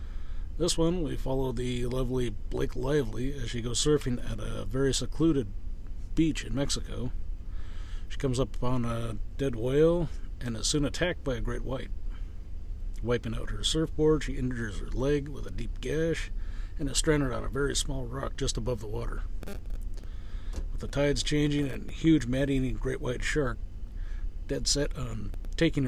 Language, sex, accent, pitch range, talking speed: English, male, American, 90-135 Hz, 170 wpm